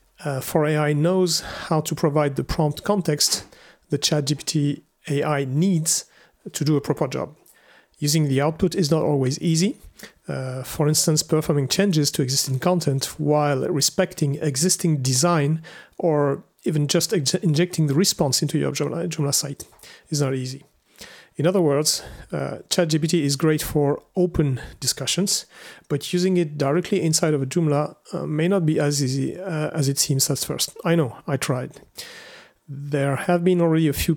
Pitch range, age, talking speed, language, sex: 145-170 Hz, 40-59, 165 wpm, English, male